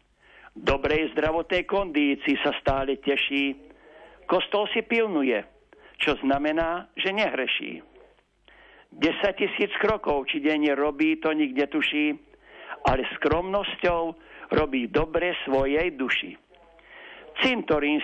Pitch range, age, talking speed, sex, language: 145-175 Hz, 60-79, 95 wpm, male, Slovak